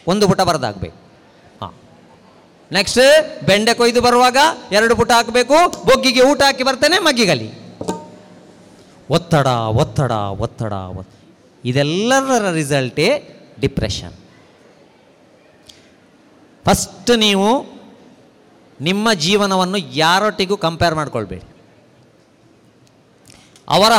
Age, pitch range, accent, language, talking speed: 30-49, 150-240 Hz, native, Kannada, 75 wpm